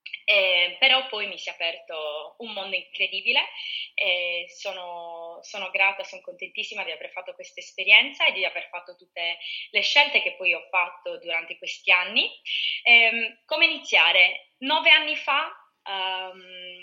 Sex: female